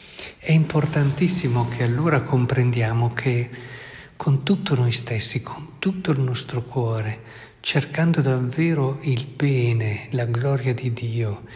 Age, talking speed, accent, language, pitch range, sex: 50-69, 120 wpm, native, Italian, 120-135 Hz, male